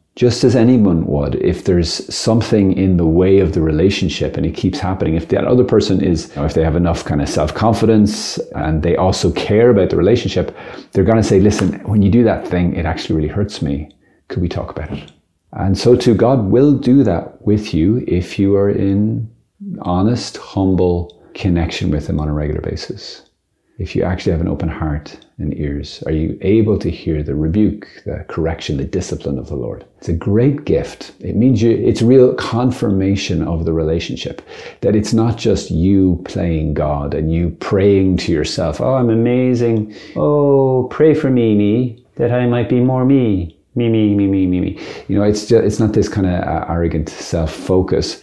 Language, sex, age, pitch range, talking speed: English, male, 30-49, 85-115 Hz, 195 wpm